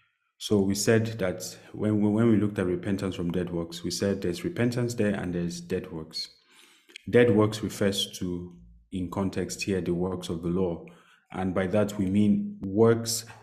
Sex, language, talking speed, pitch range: male, English, 185 wpm, 90-110 Hz